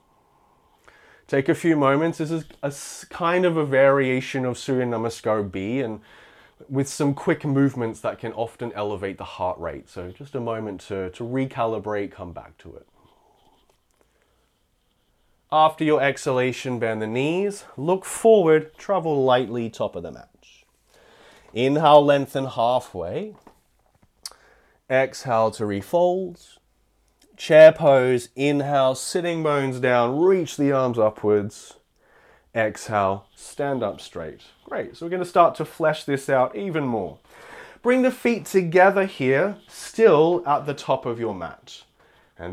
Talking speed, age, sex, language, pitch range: 135 wpm, 30-49, male, English, 120-165 Hz